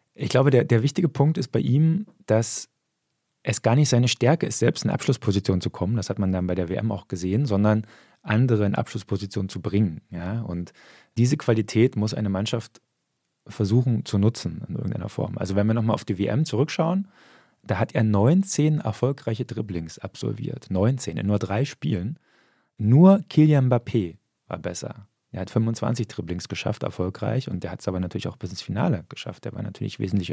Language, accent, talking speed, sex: German, German, 190 wpm, male